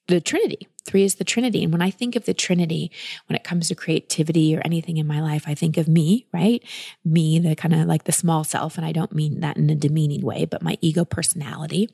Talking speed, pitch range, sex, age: 245 wpm, 160-195 Hz, female, 30-49